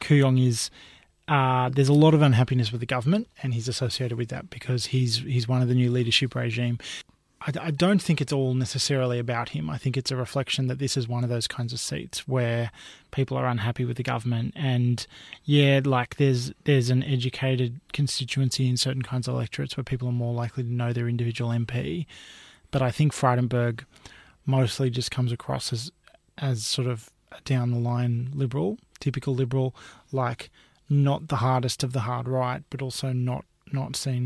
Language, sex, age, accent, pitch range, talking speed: English, male, 20-39, Australian, 125-140 Hz, 190 wpm